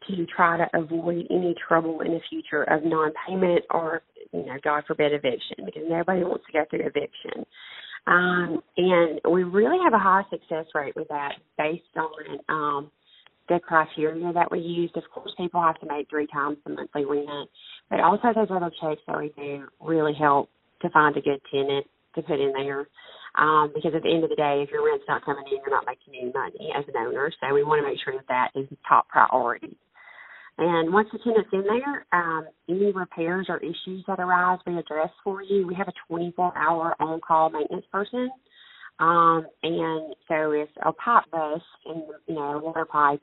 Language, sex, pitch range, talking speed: English, female, 150-180 Hz, 200 wpm